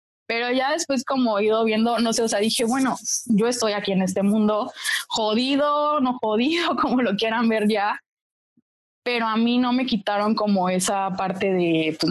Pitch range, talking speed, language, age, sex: 205-255 Hz, 190 wpm, Spanish, 20-39, female